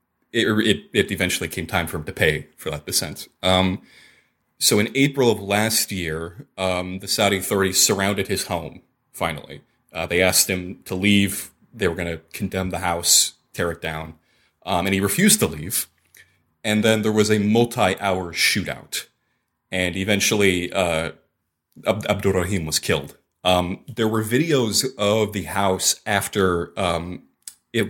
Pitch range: 90-110 Hz